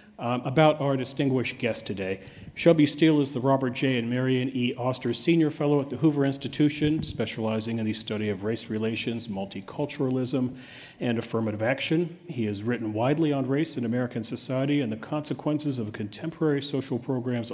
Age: 40-59